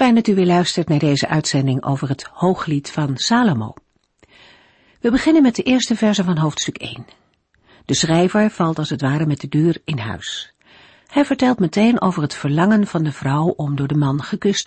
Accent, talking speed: Dutch, 190 wpm